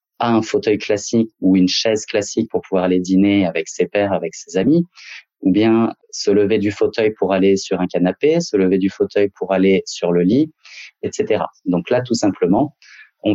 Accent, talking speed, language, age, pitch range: French, 200 wpm, French, 30-49, 95-115 Hz